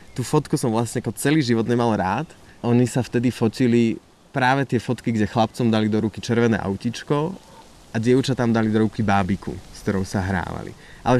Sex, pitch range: male, 100-120 Hz